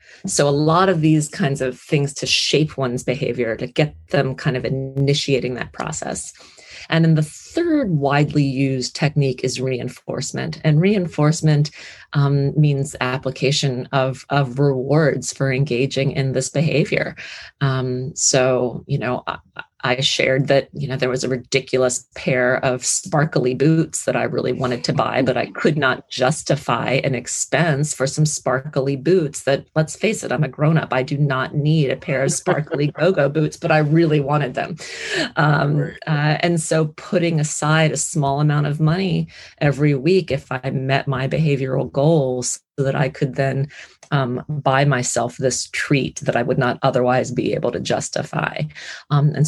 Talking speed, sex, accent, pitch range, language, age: 170 wpm, female, American, 130-155 Hz, English, 30-49